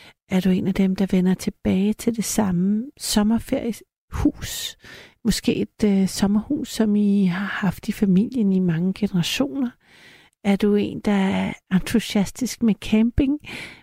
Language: Danish